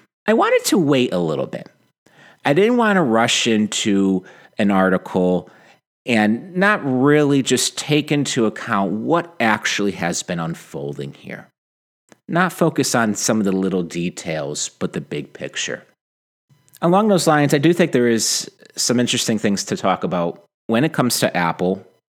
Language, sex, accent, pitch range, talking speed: English, male, American, 105-160 Hz, 160 wpm